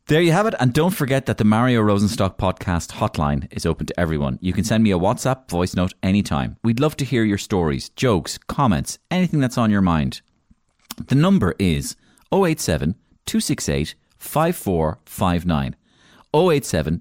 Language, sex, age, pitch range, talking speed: English, male, 30-49, 80-120 Hz, 150 wpm